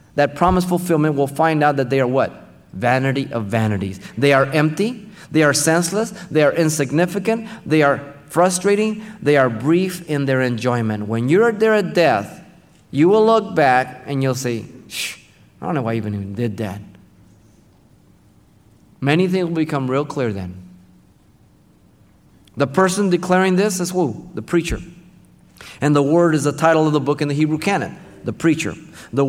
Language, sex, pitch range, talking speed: English, male, 110-155 Hz, 170 wpm